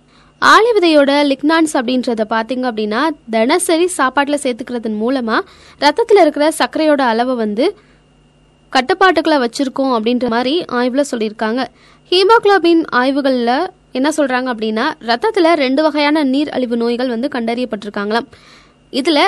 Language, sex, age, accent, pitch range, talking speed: Tamil, female, 20-39, native, 245-320 Hz, 110 wpm